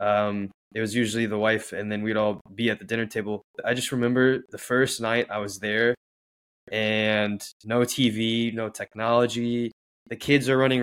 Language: English